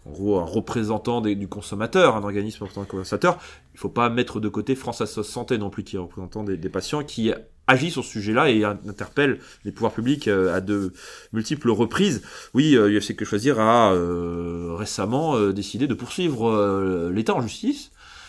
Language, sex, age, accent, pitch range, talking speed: French, male, 30-49, French, 95-120 Hz, 195 wpm